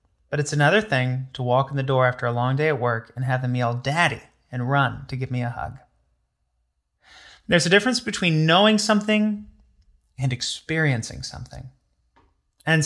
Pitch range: 115-145 Hz